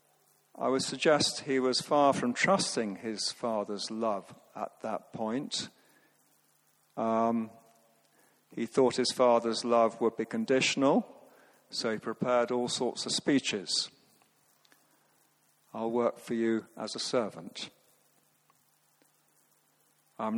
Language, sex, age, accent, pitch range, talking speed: English, male, 50-69, British, 115-130 Hz, 110 wpm